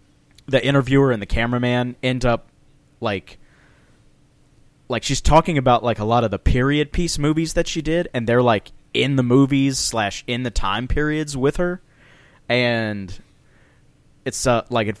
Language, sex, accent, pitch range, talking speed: English, male, American, 105-135 Hz, 165 wpm